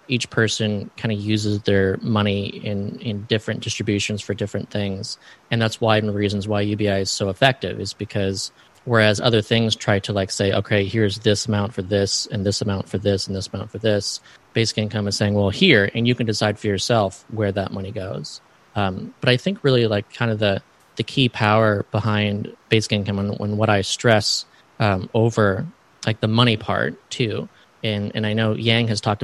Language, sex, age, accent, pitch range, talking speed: English, male, 20-39, American, 100-115 Hz, 205 wpm